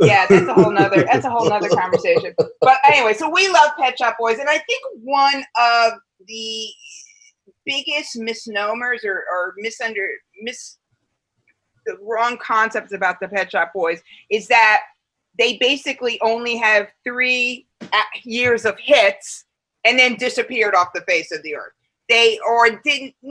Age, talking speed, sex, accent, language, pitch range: 30-49, 155 wpm, female, American, English, 200-260 Hz